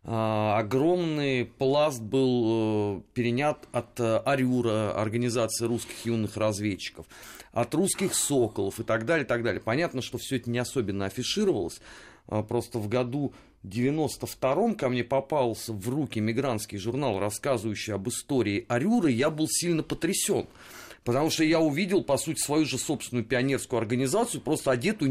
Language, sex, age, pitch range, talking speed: Russian, male, 30-49, 110-150 Hz, 140 wpm